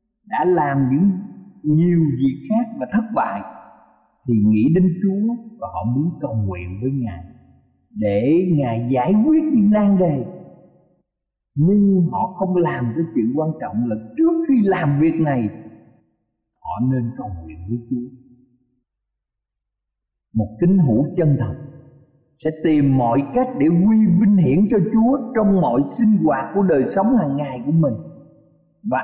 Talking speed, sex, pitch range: 150 wpm, male, 125-200 Hz